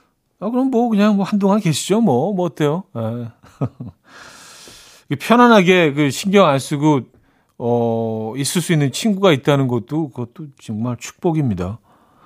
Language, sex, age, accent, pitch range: Korean, male, 40-59, native, 120-175 Hz